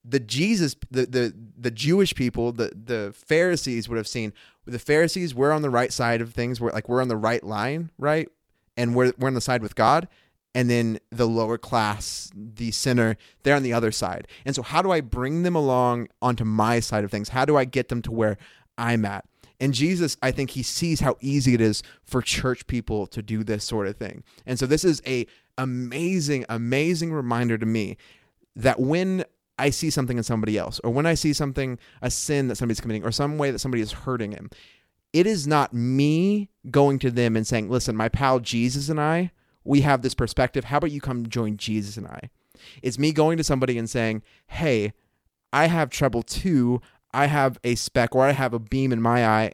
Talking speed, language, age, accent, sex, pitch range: 215 wpm, English, 30-49, American, male, 115-140 Hz